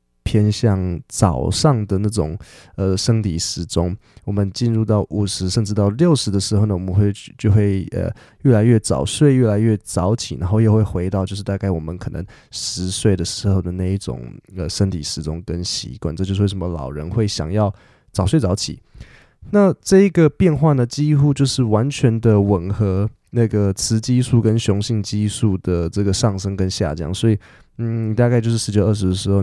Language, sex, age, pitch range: Chinese, male, 20-39, 95-125 Hz